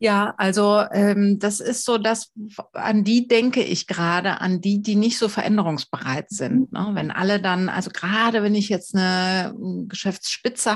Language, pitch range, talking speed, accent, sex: German, 165-205 Hz, 165 wpm, German, female